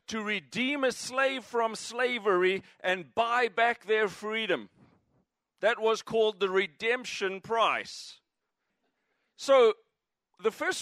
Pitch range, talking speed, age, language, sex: 195-245 Hz, 110 wpm, 40-59, English, male